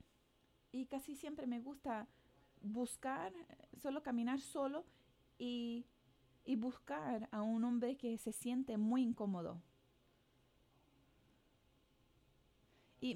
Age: 30-49